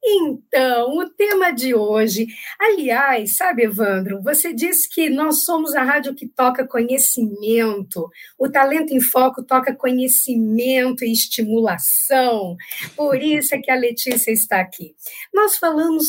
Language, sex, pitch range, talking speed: Portuguese, female, 215-285 Hz, 135 wpm